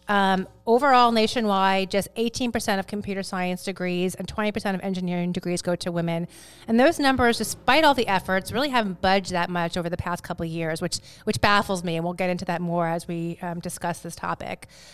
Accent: American